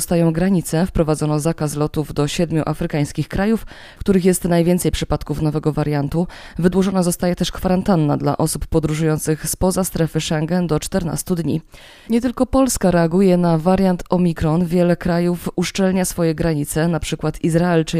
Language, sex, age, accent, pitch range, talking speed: Polish, female, 20-39, native, 160-185 Hz, 150 wpm